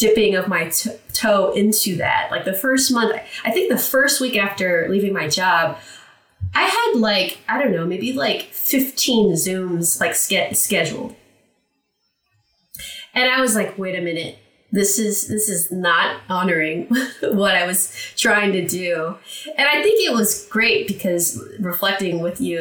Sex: female